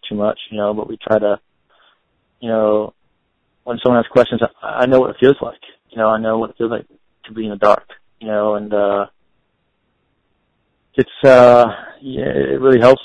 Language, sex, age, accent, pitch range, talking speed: English, male, 20-39, American, 105-115 Hz, 200 wpm